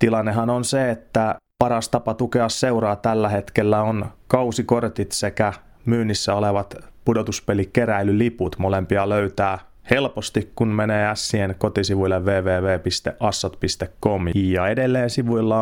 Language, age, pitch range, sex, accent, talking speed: Finnish, 30-49, 95-110 Hz, male, native, 105 wpm